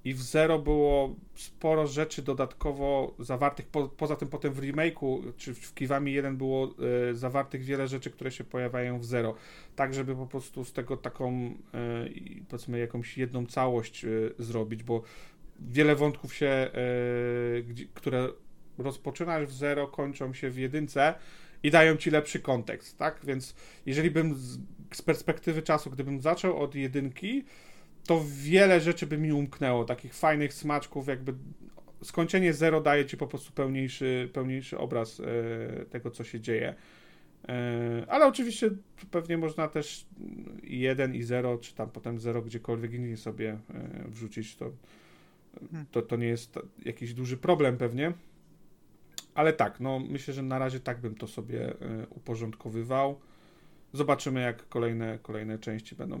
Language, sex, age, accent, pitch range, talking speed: Polish, male, 40-59, native, 120-150 Hz, 140 wpm